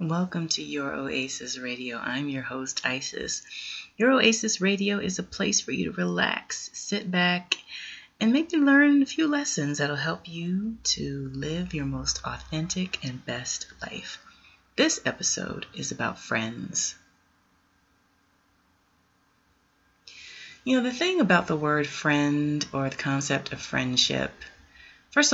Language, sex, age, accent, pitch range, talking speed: English, female, 30-49, American, 130-195 Hz, 135 wpm